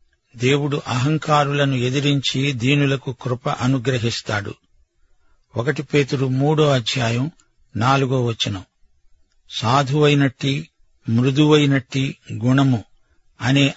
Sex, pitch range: male, 120-145 Hz